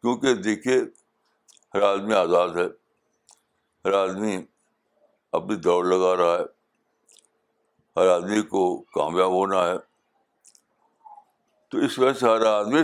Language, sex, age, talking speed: Urdu, male, 60-79, 115 wpm